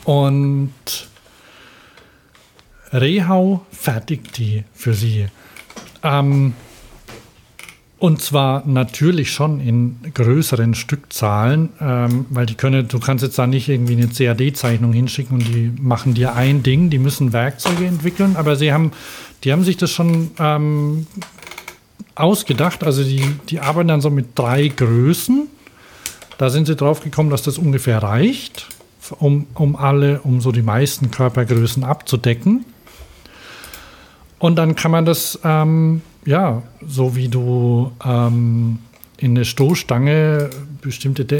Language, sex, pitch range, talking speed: German, male, 120-150 Hz, 130 wpm